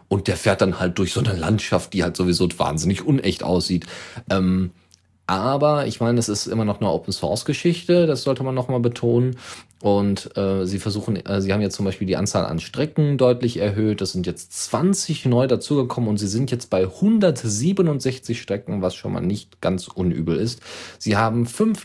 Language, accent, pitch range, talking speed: German, German, 95-125 Hz, 190 wpm